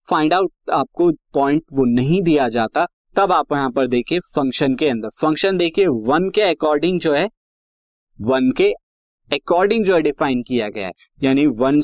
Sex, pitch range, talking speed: male, 130-175 Hz, 170 wpm